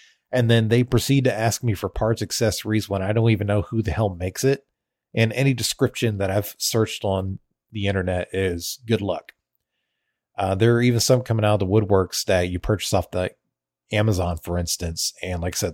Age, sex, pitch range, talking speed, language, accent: 30-49, male, 90-115 Hz, 205 wpm, English, American